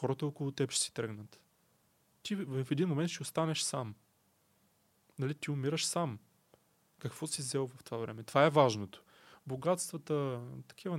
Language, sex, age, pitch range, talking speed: Bulgarian, male, 20-39, 120-165 Hz, 155 wpm